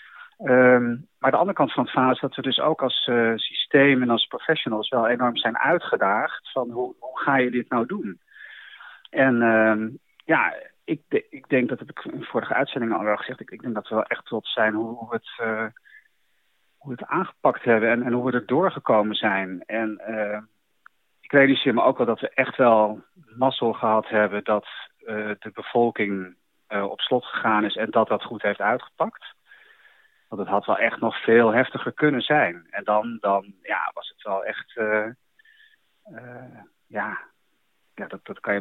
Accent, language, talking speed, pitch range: Dutch, Dutch, 200 wpm, 110-135 Hz